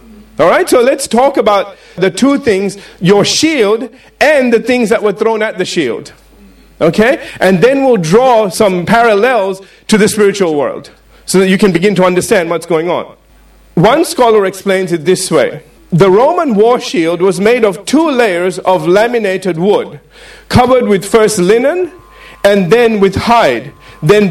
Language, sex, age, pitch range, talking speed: English, male, 50-69, 190-245 Hz, 165 wpm